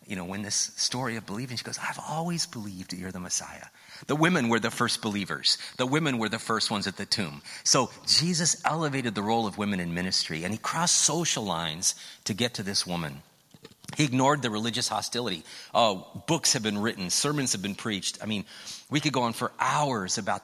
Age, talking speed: 30-49, 210 wpm